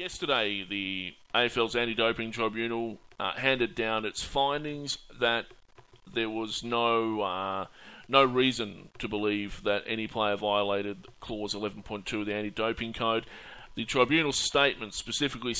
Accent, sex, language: Australian, male, English